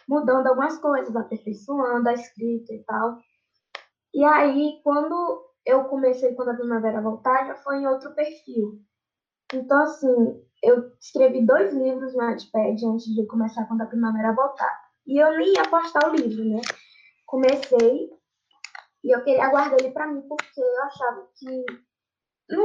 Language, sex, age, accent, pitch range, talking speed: Portuguese, female, 10-29, Brazilian, 240-295 Hz, 155 wpm